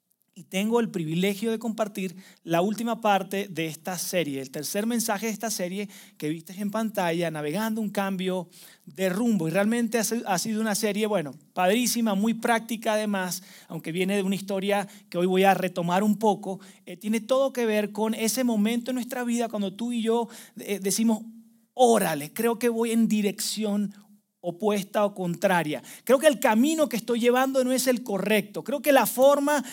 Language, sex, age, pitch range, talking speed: Spanish, male, 30-49, 180-235 Hz, 180 wpm